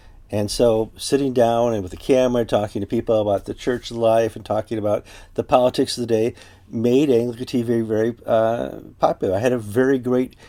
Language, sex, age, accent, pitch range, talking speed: English, male, 50-69, American, 95-125 Hz, 200 wpm